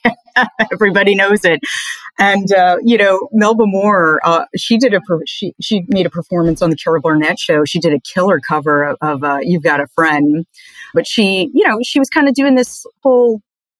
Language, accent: English, American